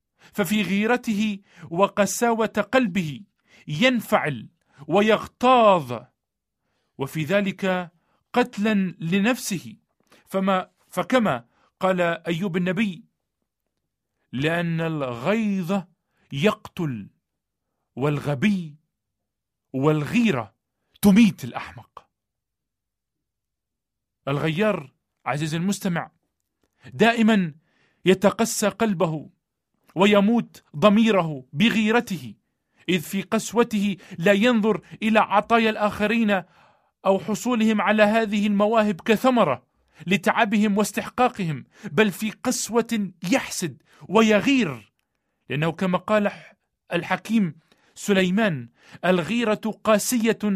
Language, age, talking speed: Arabic, 40-59, 70 wpm